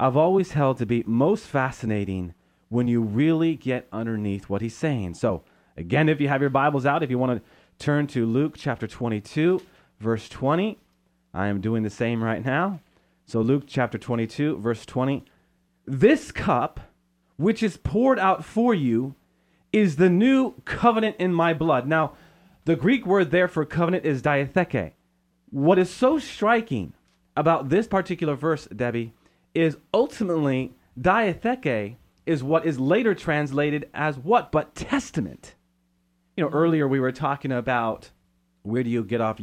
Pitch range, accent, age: 120-180 Hz, American, 30-49